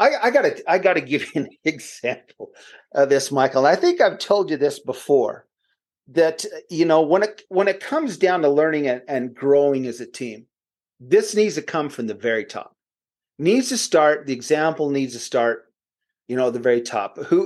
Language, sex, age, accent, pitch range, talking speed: English, male, 40-59, American, 125-190 Hz, 210 wpm